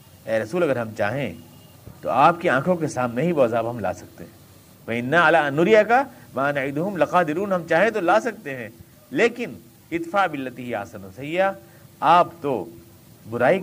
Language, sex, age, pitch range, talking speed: Urdu, male, 50-69, 130-215 Hz, 180 wpm